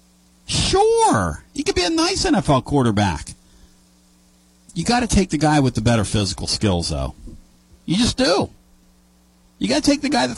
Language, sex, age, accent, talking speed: English, male, 50-69, American, 175 wpm